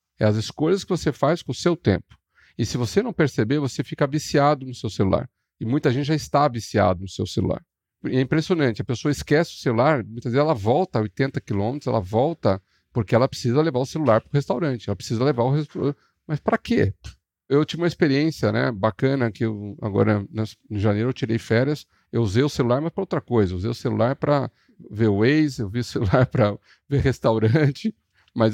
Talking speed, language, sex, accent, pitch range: 210 wpm, Portuguese, male, Brazilian, 110-150 Hz